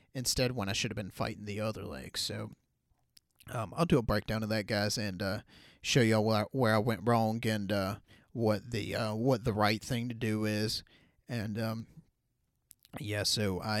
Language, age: English, 30-49